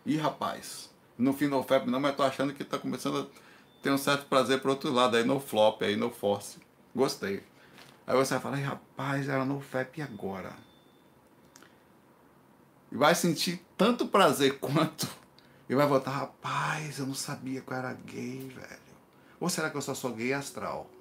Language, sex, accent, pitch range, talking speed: Portuguese, male, Brazilian, 130-160 Hz, 180 wpm